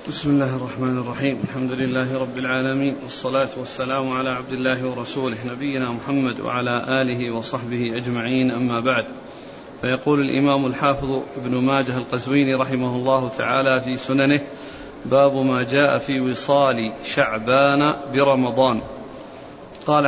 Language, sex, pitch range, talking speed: Arabic, male, 130-145 Hz, 125 wpm